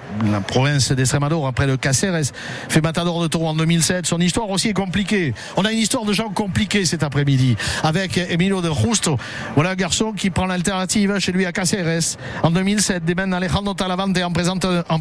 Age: 60-79